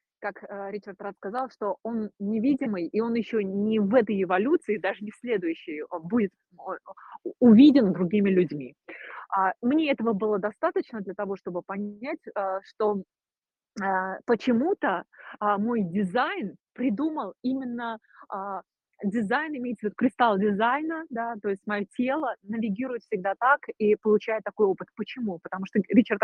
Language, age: Russian, 30-49